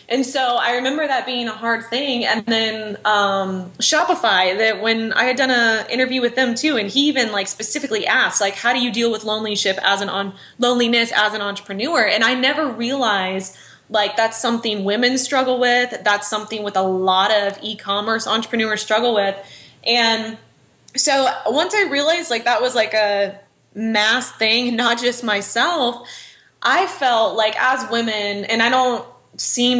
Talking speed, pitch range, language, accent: 175 wpm, 205-245 Hz, English, American